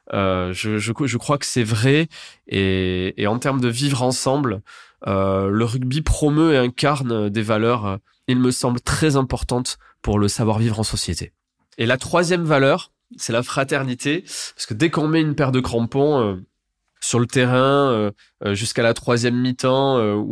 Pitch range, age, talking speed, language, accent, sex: 105-135 Hz, 20-39, 175 wpm, French, French, male